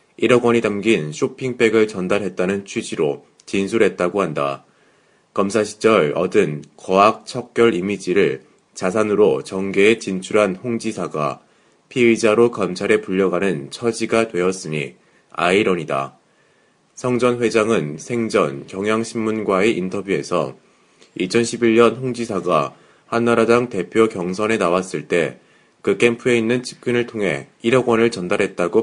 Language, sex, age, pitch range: Korean, male, 30-49, 95-120 Hz